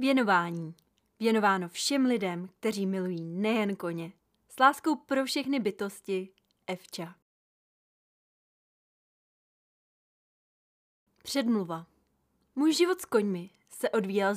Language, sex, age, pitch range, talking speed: Czech, female, 20-39, 180-235 Hz, 90 wpm